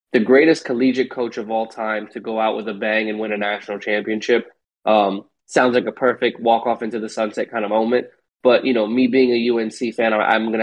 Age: 20-39